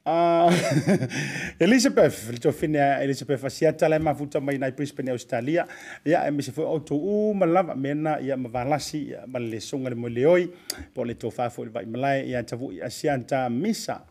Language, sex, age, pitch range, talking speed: English, male, 30-49, 130-175 Hz, 135 wpm